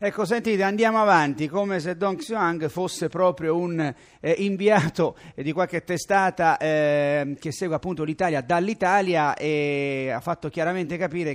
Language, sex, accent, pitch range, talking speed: Italian, male, native, 150-185 Hz, 145 wpm